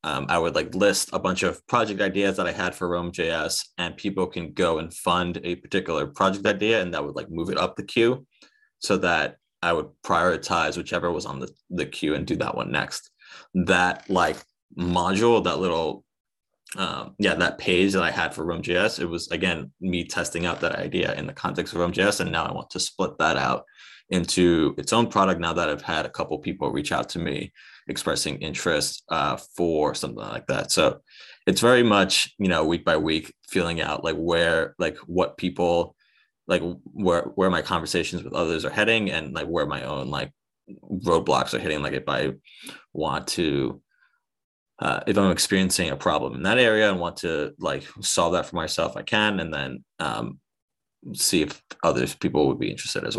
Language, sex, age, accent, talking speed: English, male, 20-39, American, 200 wpm